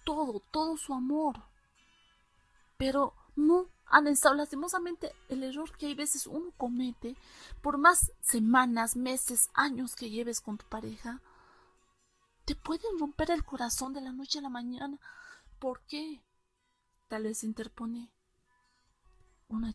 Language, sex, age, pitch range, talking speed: Spanish, female, 30-49, 220-290 Hz, 130 wpm